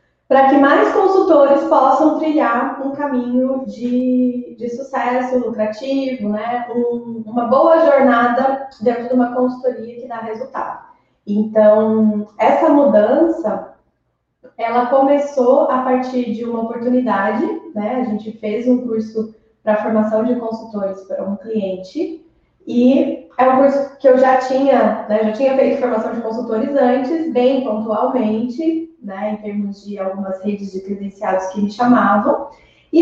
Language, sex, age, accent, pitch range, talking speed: Portuguese, female, 20-39, Brazilian, 220-280 Hz, 140 wpm